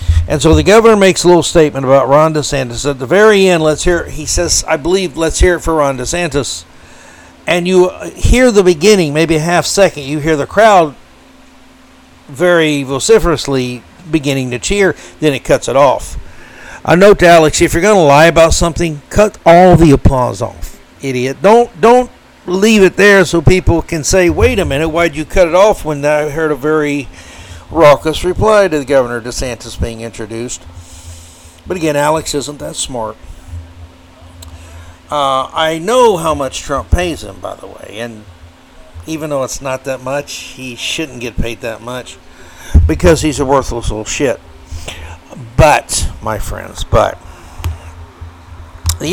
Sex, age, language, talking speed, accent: male, 60-79, English, 170 wpm, American